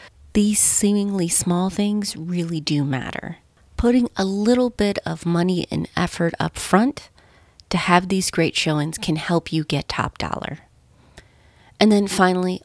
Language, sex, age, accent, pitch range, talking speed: English, female, 30-49, American, 165-200 Hz, 145 wpm